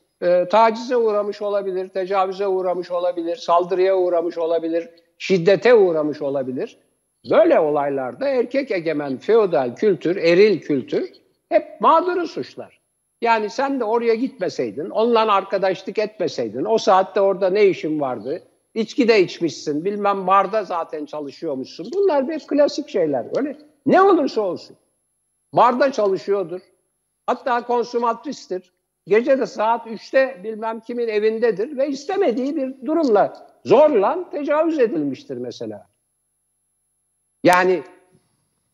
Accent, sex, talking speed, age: native, male, 110 wpm, 60-79